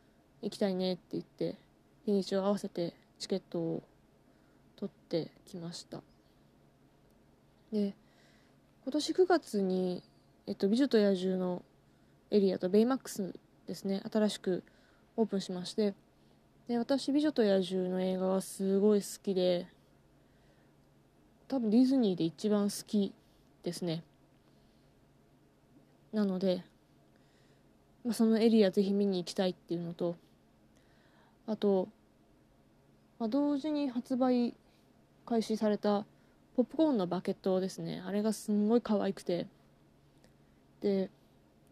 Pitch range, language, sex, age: 185-230 Hz, Japanese, female, 20-39